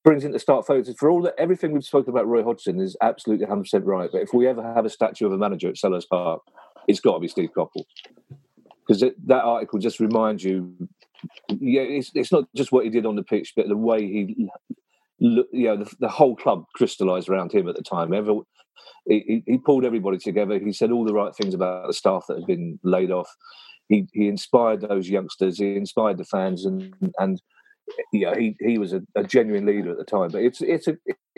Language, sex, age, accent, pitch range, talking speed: English, male, 40-59, British, 105-135 Hz, 220 wpm